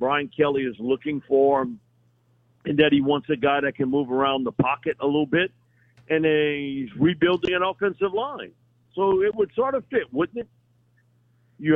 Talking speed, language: 185 wpm, English